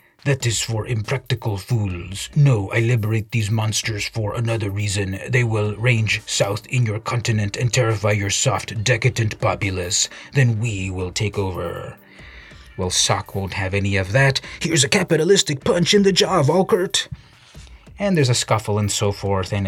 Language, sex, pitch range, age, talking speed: English, male, 105-155 Hz, 30-49, 165 wpm